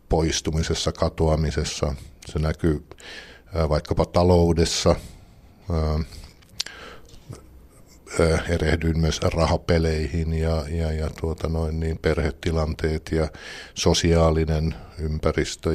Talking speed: 60 wpm